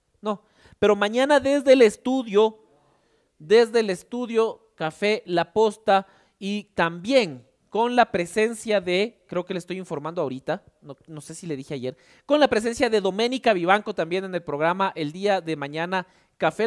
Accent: Mexican